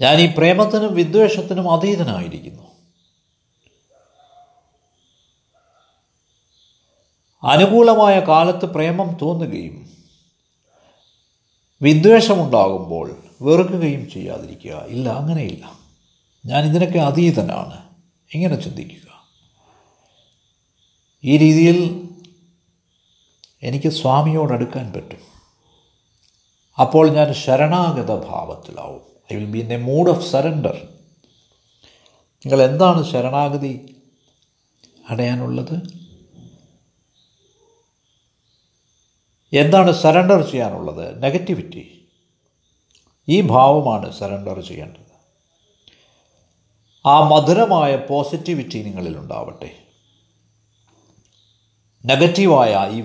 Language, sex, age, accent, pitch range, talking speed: Malayalam, male, 50-69, native, 110-175 Hz, 60 wpm